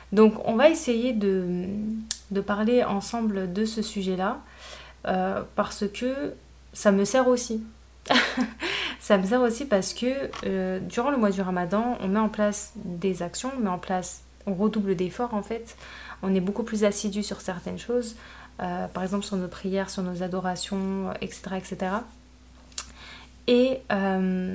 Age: 20-39